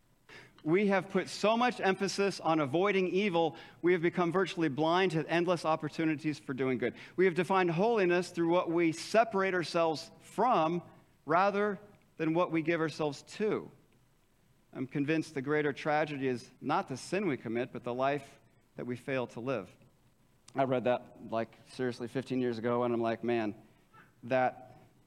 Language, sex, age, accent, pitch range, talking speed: English, male, 40-59, American, 130-180 Hz, 165 wpm